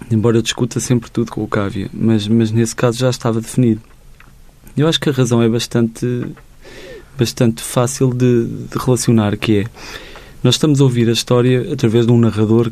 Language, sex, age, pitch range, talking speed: Portuguese, male, 20-39, 115-130 Hz, 180 wpm